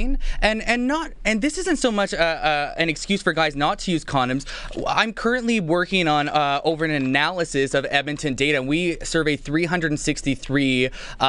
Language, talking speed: English, 180 wpm